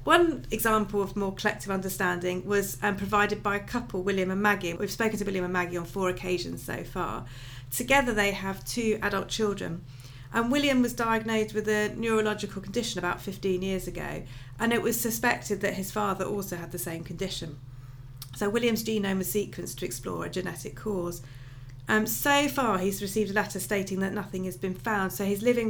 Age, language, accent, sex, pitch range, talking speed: 40-59, English, British, female, 175-215 Hz, 190 wpm